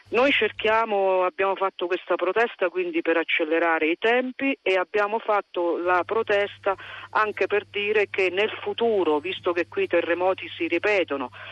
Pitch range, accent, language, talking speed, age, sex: 155-195 Hz, native, Italian, 150 wpm, 40-59, female